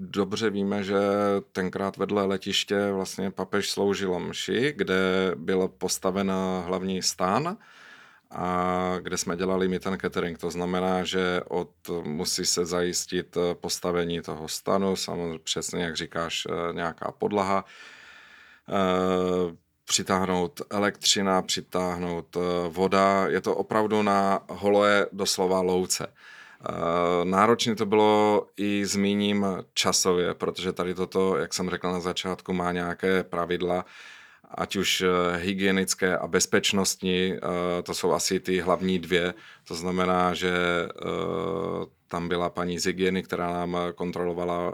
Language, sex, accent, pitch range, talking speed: Czech, male, native, 90-95 Hz, 115 wpm